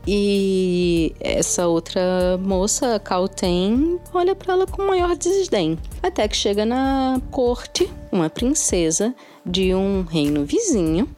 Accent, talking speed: Brazilian, 120 wpm